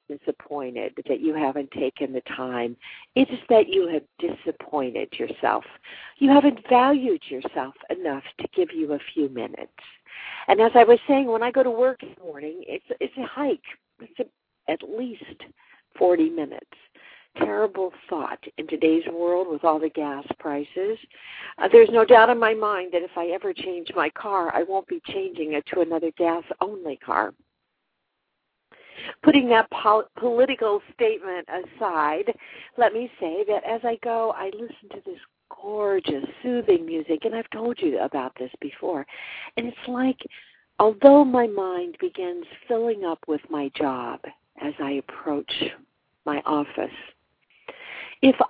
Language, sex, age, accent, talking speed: English, female, 50-69, American, 155 wpm